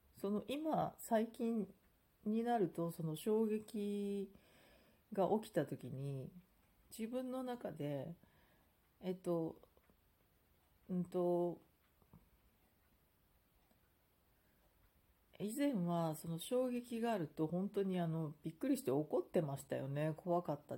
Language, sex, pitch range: Japanese, female, 150-190 Hz